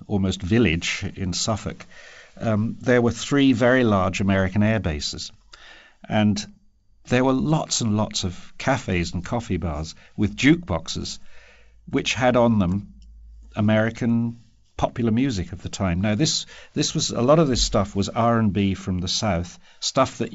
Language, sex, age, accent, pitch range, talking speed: English, male, 50-69, British, 95-120 Hz, 150 wpm